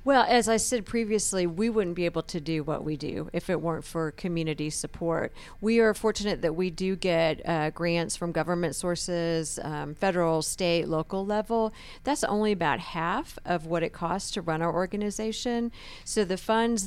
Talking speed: 185 wpm